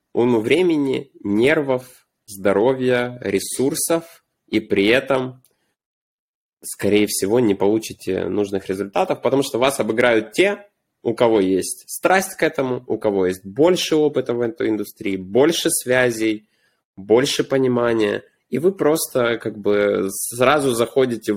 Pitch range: 110-160 Hz